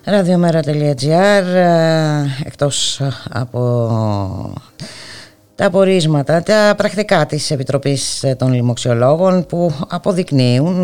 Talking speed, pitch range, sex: 70 wpm, 110-155 Hz, female